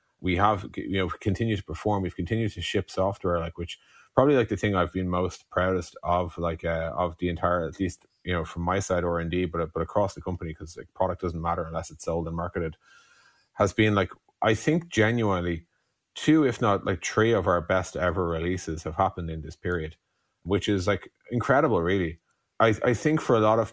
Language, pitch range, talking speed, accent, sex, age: English, 85-100 Hz, 215 wpm, Irish, male, 30-49